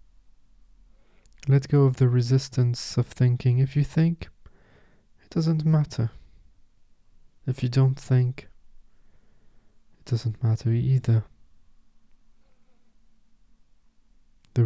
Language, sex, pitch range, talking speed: English, male, 90-125 Hz, 90 wpm